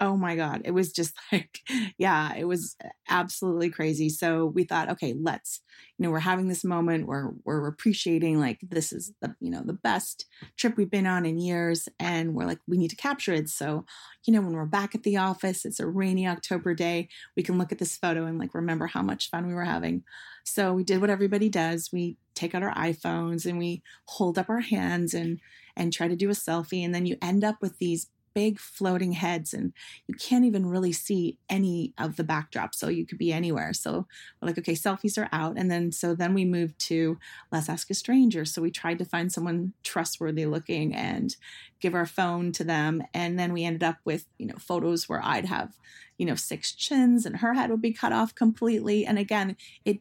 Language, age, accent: English, 30-49, American